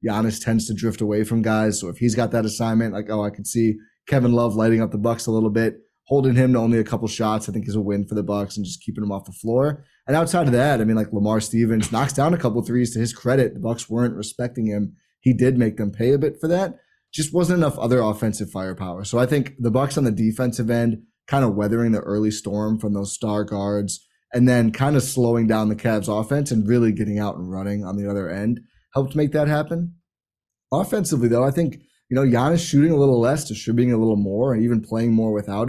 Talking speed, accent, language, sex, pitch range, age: 250 wpm, American, English, male, 110-130 Hz, 20-39